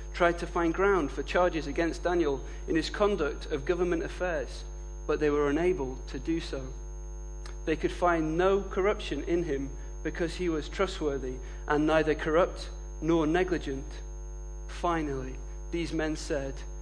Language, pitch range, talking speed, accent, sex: English, 140-175 Hz, 145 wpm, British, male